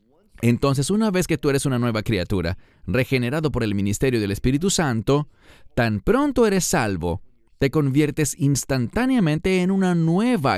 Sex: male